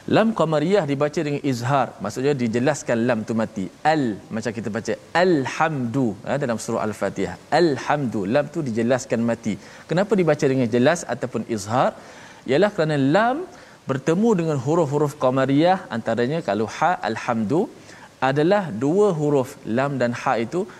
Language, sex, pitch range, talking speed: Malayalam, male, 120-155 Hz, 135 wpm